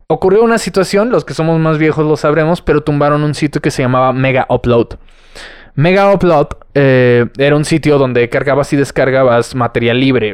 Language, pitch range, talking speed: Spanish, 120-155 Hz, 180 wpm